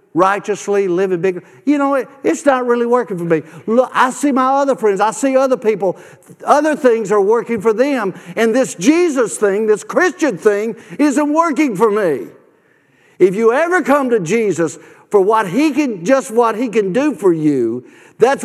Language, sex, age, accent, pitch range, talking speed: English, male, 50-69, American, 210-285 Hz, 185 wpm